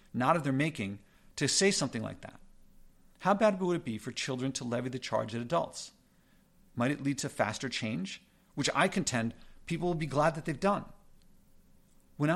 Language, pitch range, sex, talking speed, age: English, 130-175 Hz, male, 190 wpm, 50-69